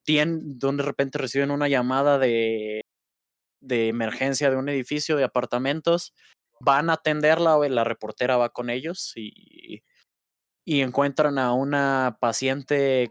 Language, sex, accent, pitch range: Spanish, male, Mexican, 120-150 Hz